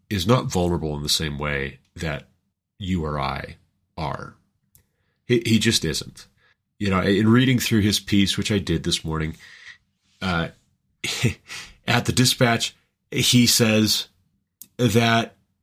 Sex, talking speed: male, 135 wpm